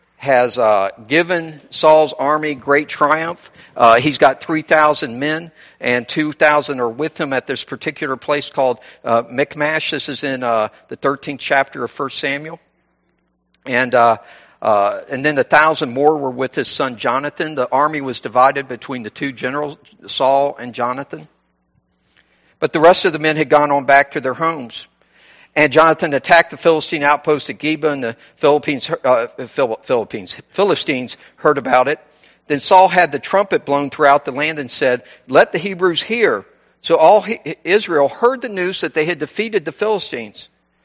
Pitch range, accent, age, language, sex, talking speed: 135-165 Hz, American, 50-69, English, male, 175 wpm